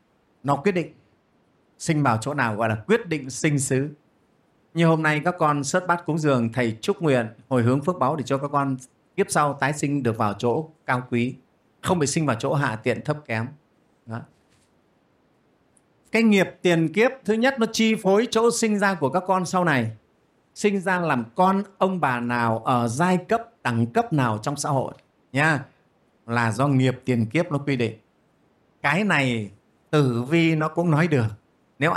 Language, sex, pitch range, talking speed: Vietnamese, male, 130-185 Hz, 195 wpm